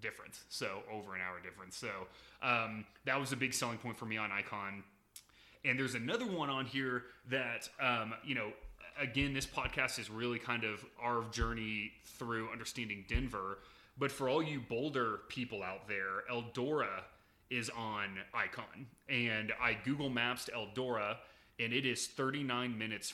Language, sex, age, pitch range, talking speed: English, male, 30-49, 105-125 Hz, 165 wpm